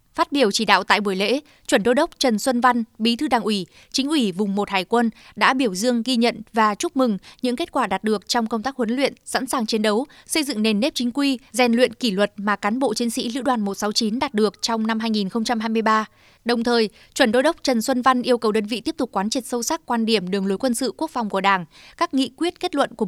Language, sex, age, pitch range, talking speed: Vietnamese, female, 20-39, 220-260 Hz, 265 wpm